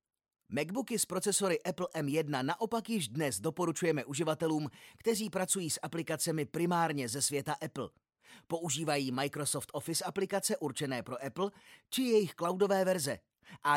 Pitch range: 140-175 Hz